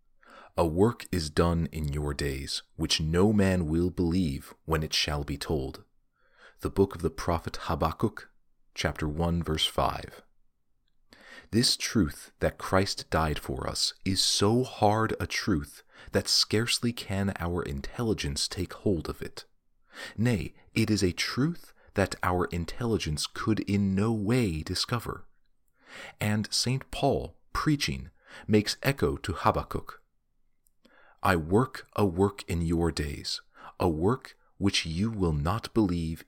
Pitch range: 80-105 Hz